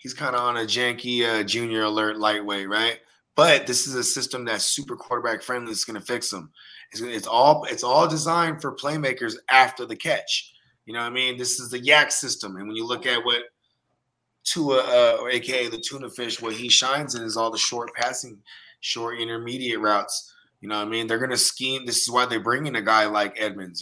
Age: 20-39